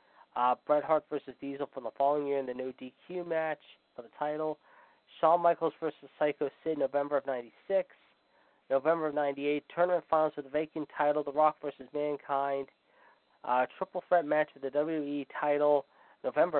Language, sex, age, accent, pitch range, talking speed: English, male, 20-39, American, 130-150 Hz, 175 wpm